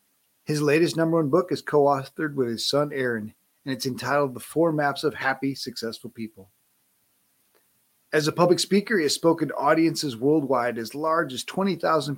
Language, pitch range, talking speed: English, 120-155 Hz, 175 wpm